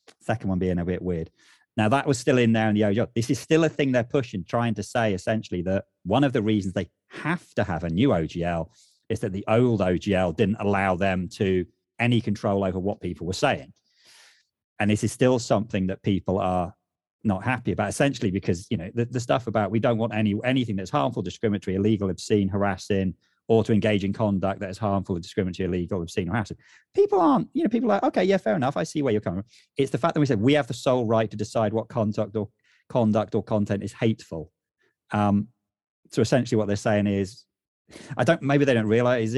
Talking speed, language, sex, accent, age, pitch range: 225 wpm, English, male, British, 30-49, 100-120 Hz